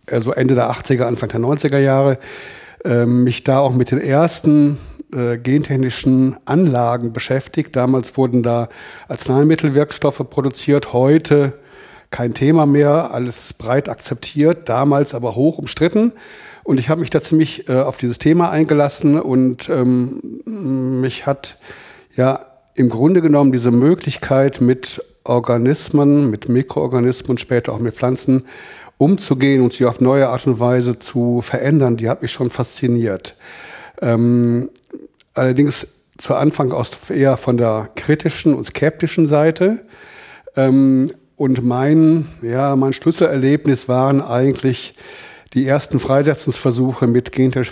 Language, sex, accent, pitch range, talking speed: German, male, German, 125-150 Hz, 130 wpm